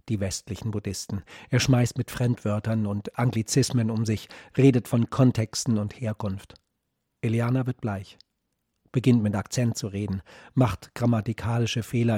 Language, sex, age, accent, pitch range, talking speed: German, male, 40-59, German, 110-125 Hz, 135 wpm